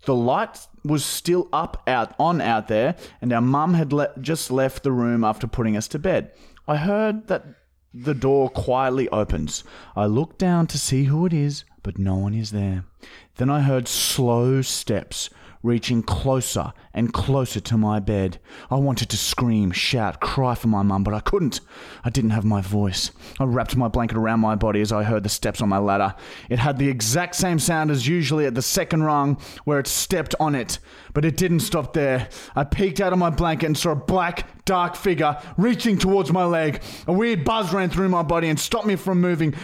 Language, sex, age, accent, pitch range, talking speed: English, male, 30-49, Australian, 115-175 Hz, 205 wpm